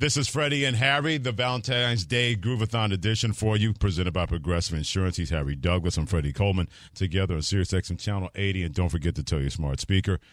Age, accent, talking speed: 50-69, American, 205 wpm